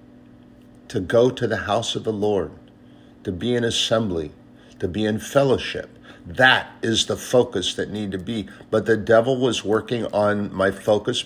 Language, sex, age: English, male, 50-69